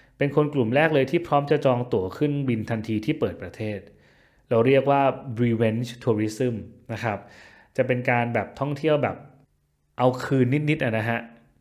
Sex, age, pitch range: male, 20-39, 110-140 Hz